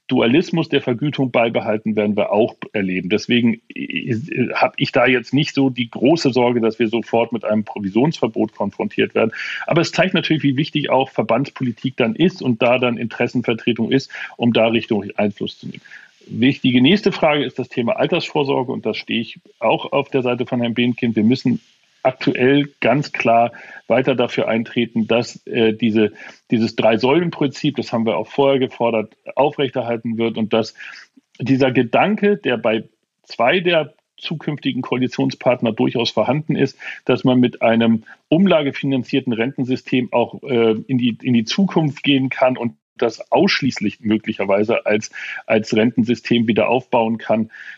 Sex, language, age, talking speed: male, German, 40-59, 155 wpm